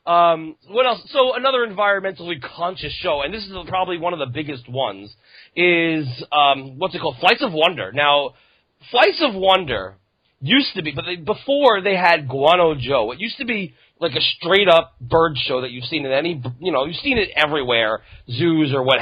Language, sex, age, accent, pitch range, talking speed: English, male, 30-49, American, 120-175 Hz, 190 wpm